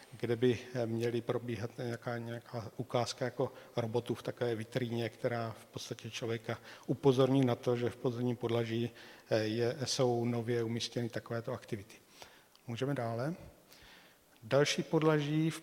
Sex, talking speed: male, 130 wpm